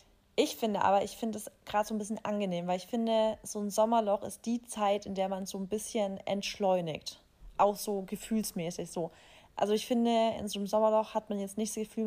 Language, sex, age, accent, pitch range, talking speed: German, female, 20-39, German, 200-230 Hz, 225 wpm